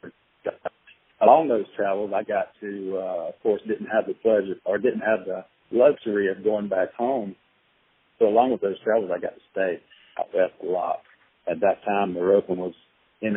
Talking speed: 185 wpm